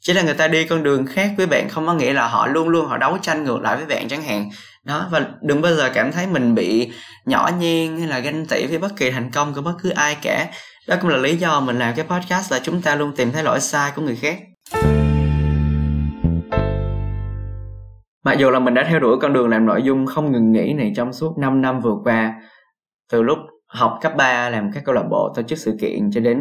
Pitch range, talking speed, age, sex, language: 115-160 Hz, 250 wpm, 20-39, male, Vietnamese